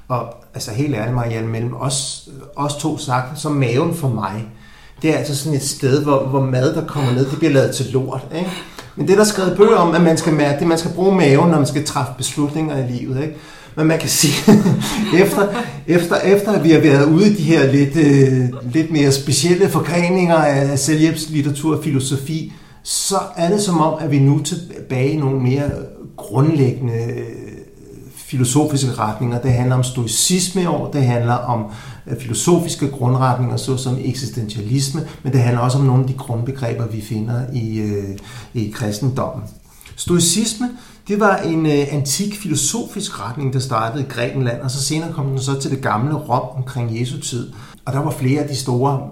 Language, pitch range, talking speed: Danish, 125-155 Hz, 185 wpm